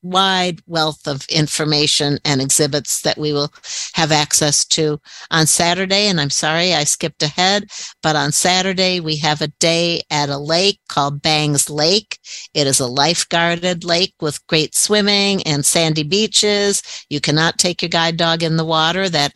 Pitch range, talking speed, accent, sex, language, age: 150-170 Hz, 165 wpm, American, female, English, 60-79